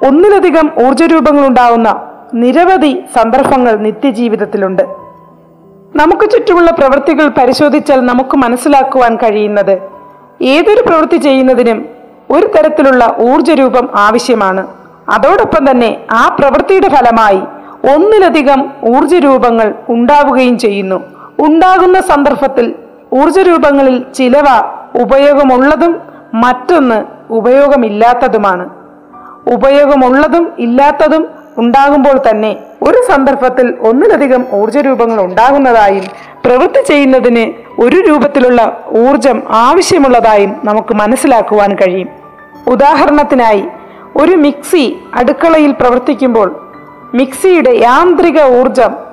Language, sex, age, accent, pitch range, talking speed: Malayalam, female, 40-59, native, 235-300 Hz, 80 wpm